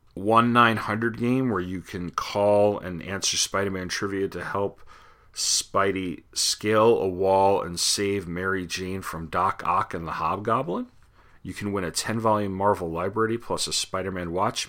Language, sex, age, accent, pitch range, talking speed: English, male, 40-59, American, 85-100 Hz, 150 wpm